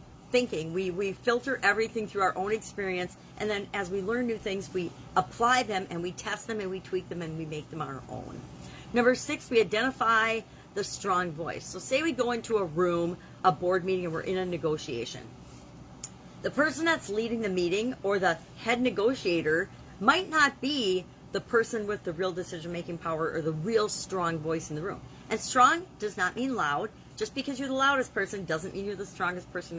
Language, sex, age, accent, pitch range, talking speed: English, female, 40-59, American, 175-230 Hz, 205 wpm